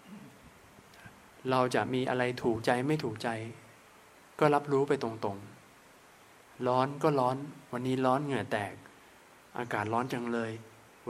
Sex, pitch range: male, 115-140 Hz